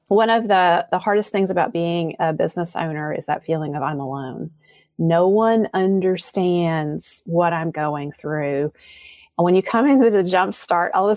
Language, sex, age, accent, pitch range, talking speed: English, female, 40-59, American, 165-225 Hz, 185 wpm